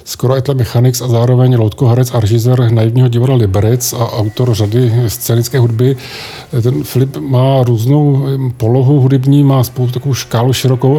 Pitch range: 115-130 Hz